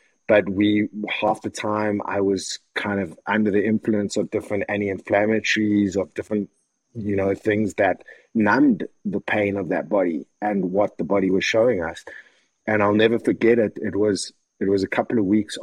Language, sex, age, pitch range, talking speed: English, male, 30-49, 95-105 Hz, 180 wpm